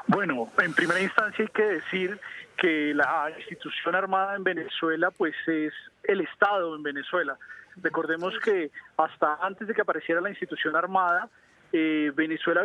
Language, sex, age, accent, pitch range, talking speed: Spanish, male, 30-49, Colombian, 170-215 Hz, 145 wpm